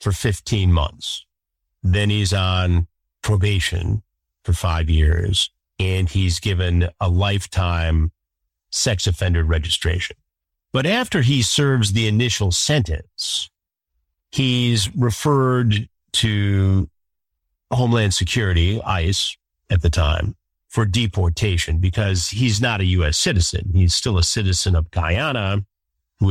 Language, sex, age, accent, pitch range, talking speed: English, male, 50-69, American, 85-115 Hz, 110 wpm